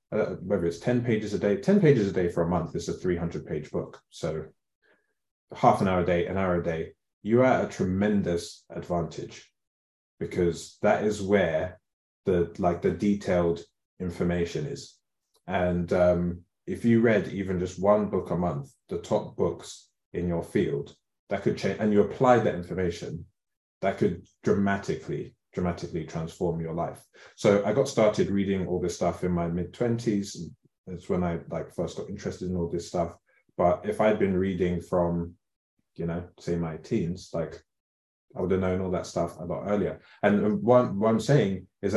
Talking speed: 185 wpm